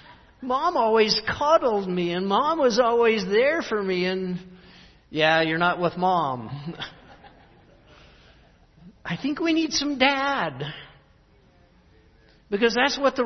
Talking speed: 120 wpm